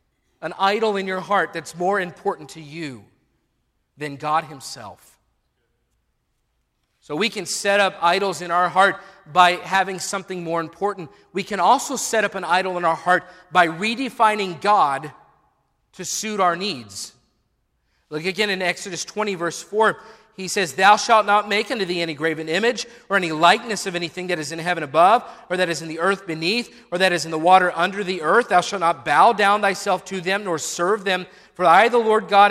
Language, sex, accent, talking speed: English, male, American, 190 wpm